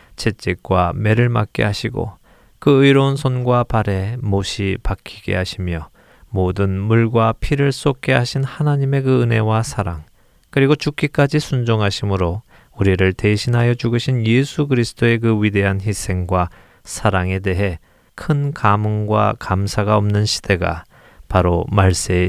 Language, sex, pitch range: Korean, male, 95-125 Hz